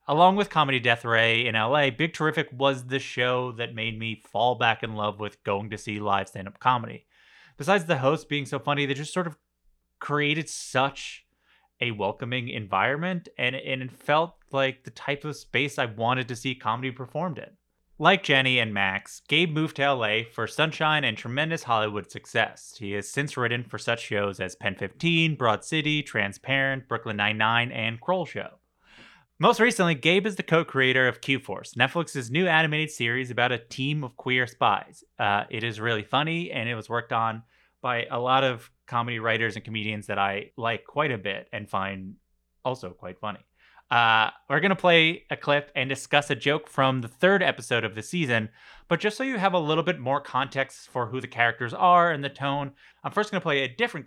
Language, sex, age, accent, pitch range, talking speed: English, male, 30-49, American, 115-150 Hz, 195 wpm